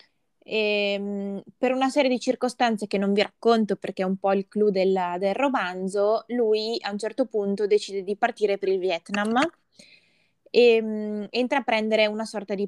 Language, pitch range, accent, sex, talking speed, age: Italian, 190-220 Hz, native, female, 170 wpm, 20-39